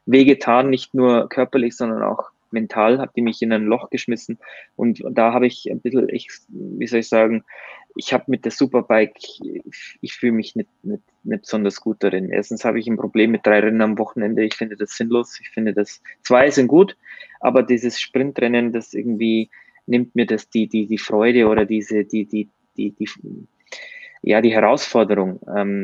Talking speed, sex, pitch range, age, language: 190 wpm, male, 110-125 Hz, 20-39, German